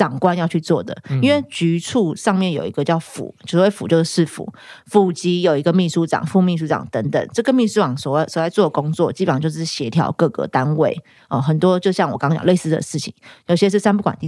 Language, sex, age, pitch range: Chinese, female, 30-49, 155-200 Hz